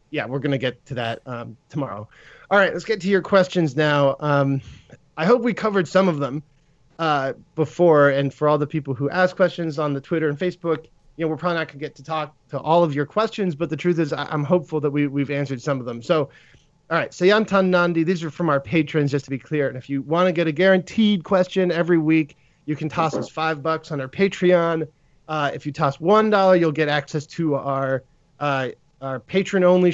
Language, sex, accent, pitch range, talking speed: English, male, American, 145-175 Hz, 235 wpm